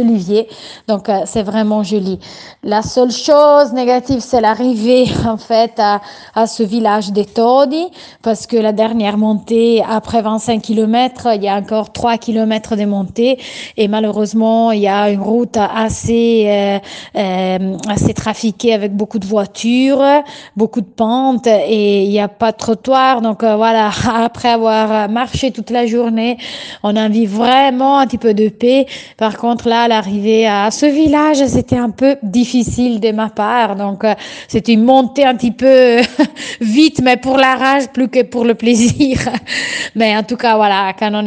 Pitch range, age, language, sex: 210-240 Hz, 30-49, Italian, female